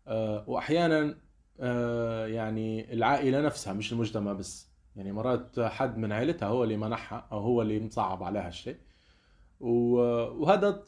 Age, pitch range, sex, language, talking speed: 20-39, 105-135 Hz, male, Arabic, 120 wpm